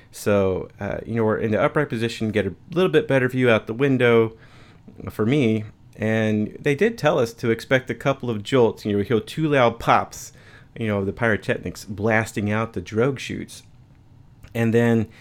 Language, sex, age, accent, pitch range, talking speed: English, male, 30-49, American, 105-125 Hz, 195 wpm